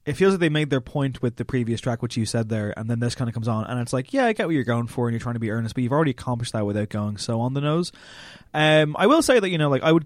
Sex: male